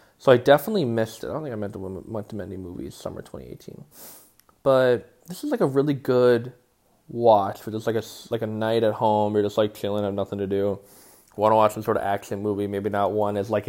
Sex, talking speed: male, 240 wpm